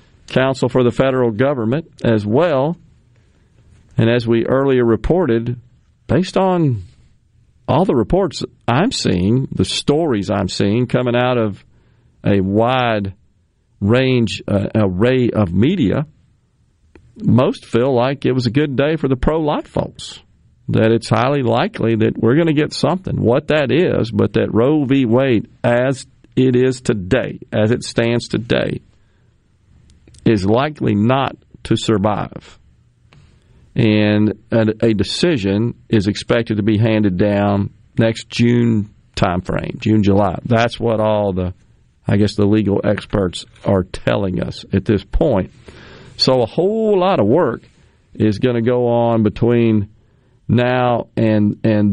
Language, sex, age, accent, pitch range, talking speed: English, male, 50-69, American, 105-130 Hz, 140 wpm